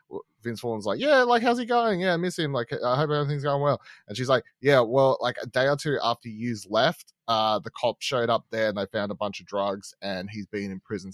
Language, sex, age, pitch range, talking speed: English, male, 20-39, 100-135 Hz, 265 wpm